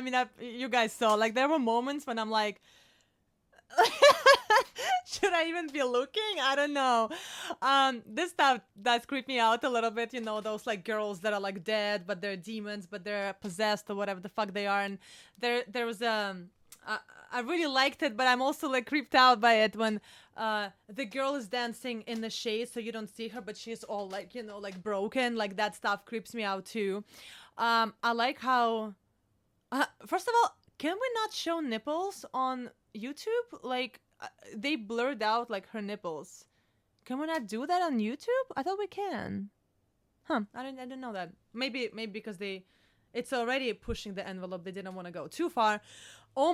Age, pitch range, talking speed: 20-39, 205-260 Hz, 200 wpm